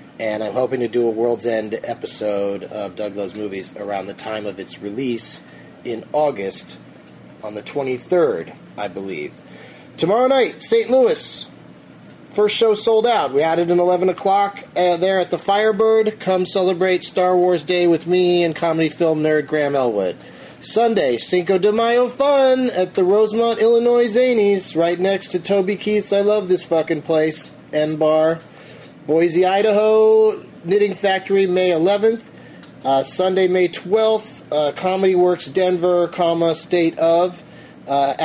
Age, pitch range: 30-49, 120-190 Hz